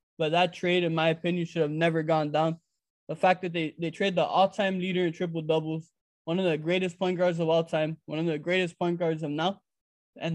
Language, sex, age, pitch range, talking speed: English, male, 20-39, 160-180 Hz, 230 wpm